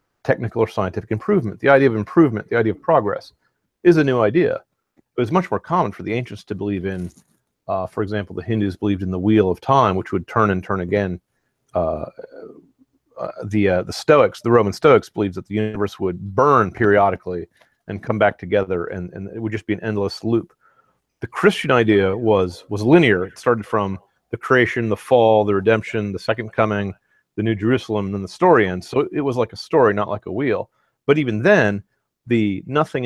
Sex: male